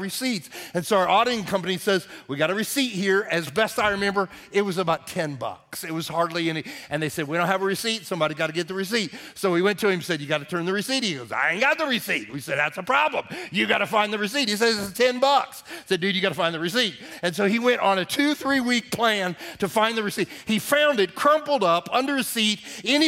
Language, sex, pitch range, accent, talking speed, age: English, male, 140-210 Hz, American, 275 wpm, 40-59